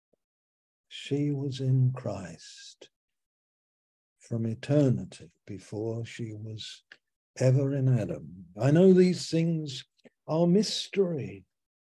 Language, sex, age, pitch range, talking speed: English, male, 60-79, 125-165 Hz, 90 wpm